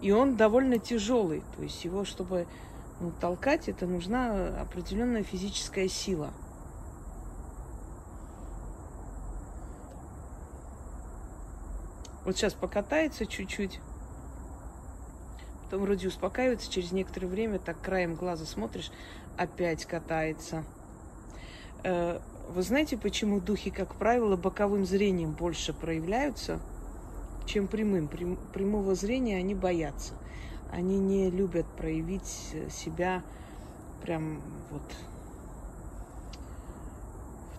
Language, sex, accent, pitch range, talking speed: Russian, female, native, 145-195 Hz, 85 wpm